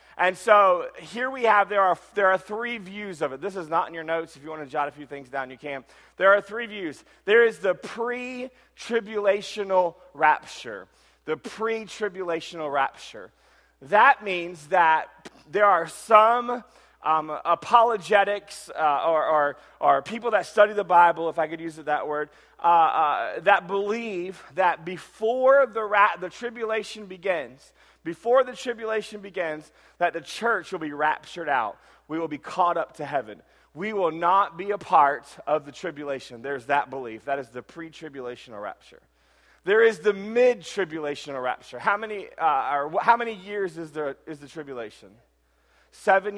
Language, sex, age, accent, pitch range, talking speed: English, male, 30-49, American, 155-215 Hz, 170 wpm